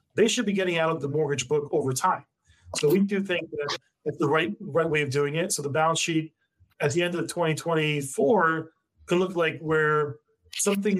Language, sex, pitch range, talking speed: English, male, 145-180 Hz, 205 wpm